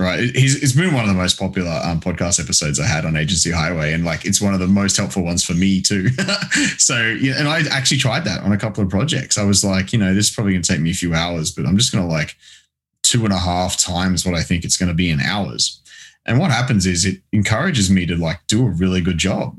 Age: 20-39